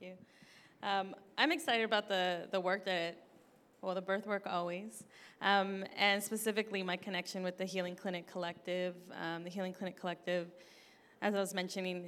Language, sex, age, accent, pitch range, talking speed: English, female, 20-39, American, 180-210 Hz, 170 wpm